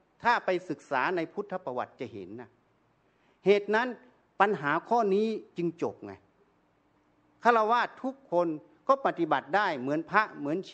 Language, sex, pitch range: Thai, male, 170-220 Hz